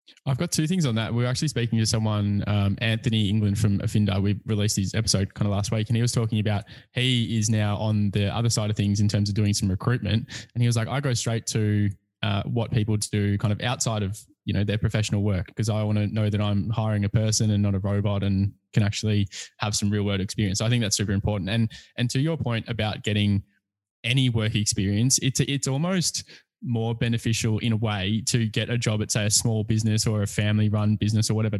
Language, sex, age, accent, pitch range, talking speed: English, male, 10-29, Australian, 105-115 Hz, 245 wpm